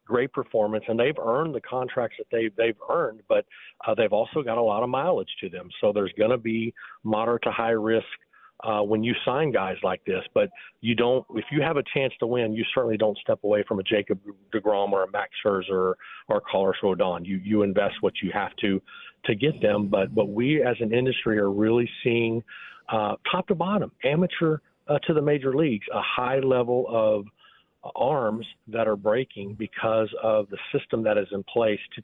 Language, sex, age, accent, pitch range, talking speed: English, male, 40-59, American, 105-125 Hz, 210 wpm